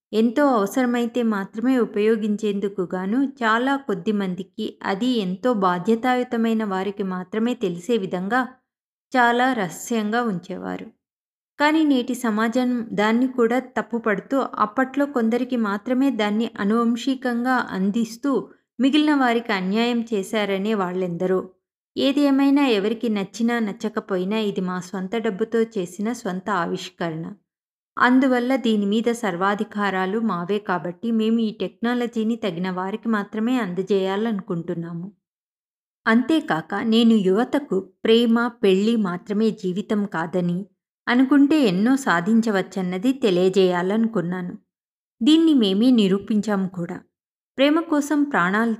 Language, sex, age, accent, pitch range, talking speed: Telugu, female, 20-39, native, 195-240 Hz, 95 wpm